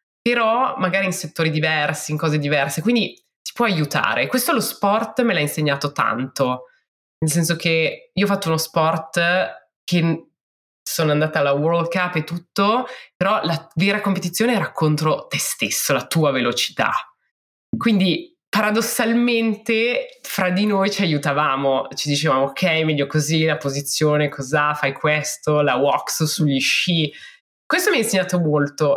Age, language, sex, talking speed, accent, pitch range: 20-39, Italian, female, 150 wpm, native, 140-180 Hz